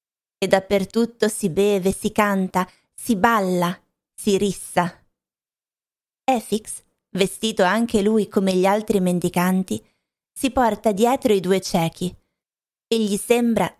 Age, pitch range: 20-39, 185-225 Hz